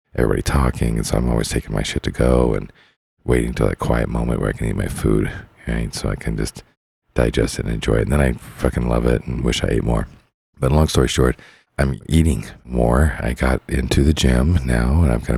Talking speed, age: 235 wpm, 40-59